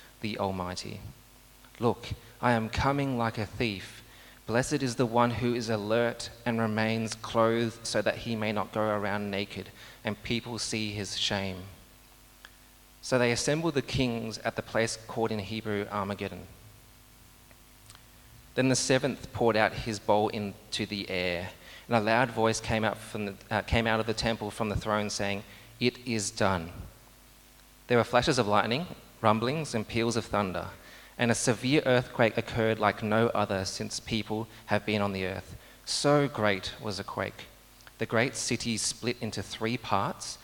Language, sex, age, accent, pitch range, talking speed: English, male, 30-49, Australian, 100-120 Hz, 160 wpm